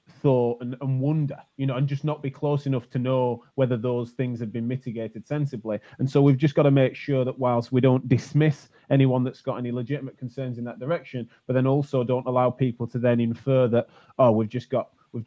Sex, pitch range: male, 120-140 Hz